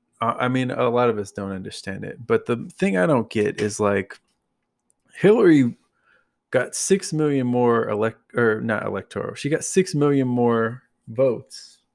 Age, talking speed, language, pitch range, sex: 20-39, 160 wpm, English, 115-150 Hz, male